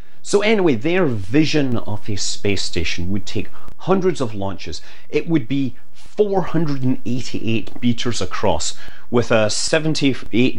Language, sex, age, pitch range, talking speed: English, male, 30-49, 105-155 Hz, 125 wpm